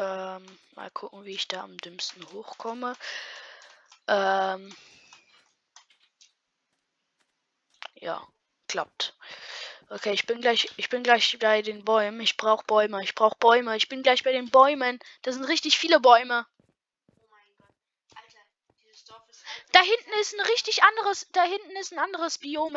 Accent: German